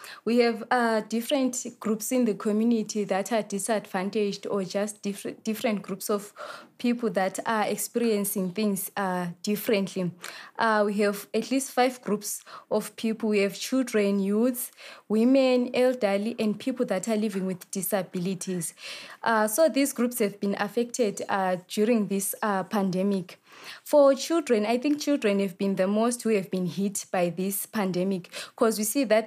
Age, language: 20-39, English